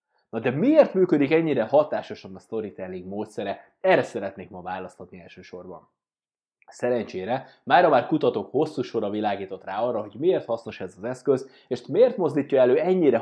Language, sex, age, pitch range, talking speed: Hungarian, male, 20-39, 100-140 Hz, 155 wpm